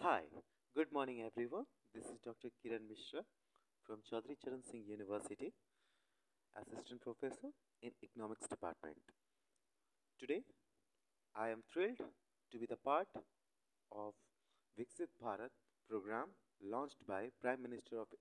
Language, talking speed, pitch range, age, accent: English, 115 wpm, 115-175 Hz, 30-49, Indian